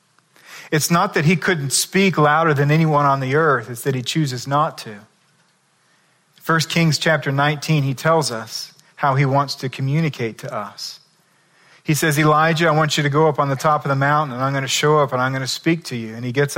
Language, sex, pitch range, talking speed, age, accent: English, male, 130-155 Hz, 230 wpm, 40-59, American